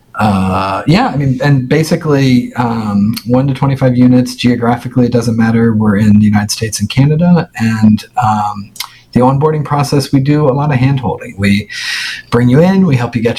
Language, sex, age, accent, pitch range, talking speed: English, male, 40-59, American, 105-130 Hz, 185 wpm